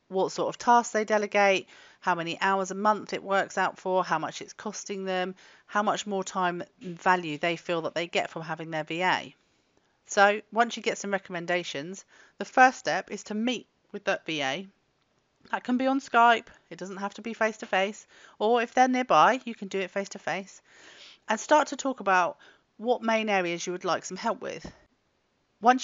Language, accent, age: English, British, 40-59